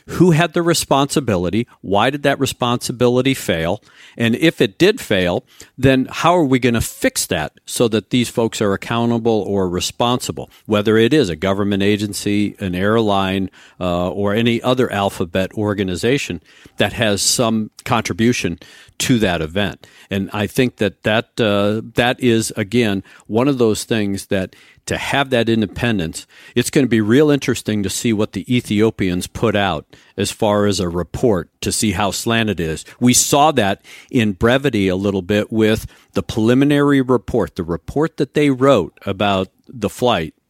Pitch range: 100-125 Hz